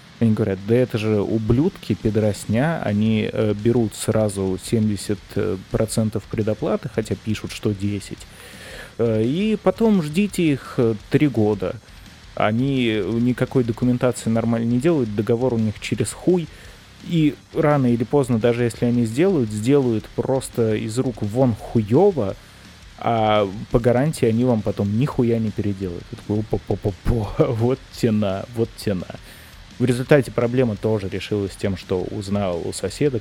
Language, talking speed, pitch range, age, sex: Russian, 130 wpm, 105-130 Hz, 20-39, male